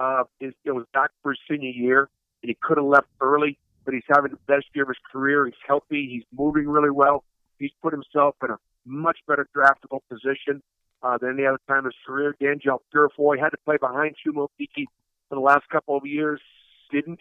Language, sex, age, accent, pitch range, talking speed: English, male, 50-69, American, 140-160 Hz, 200 wpm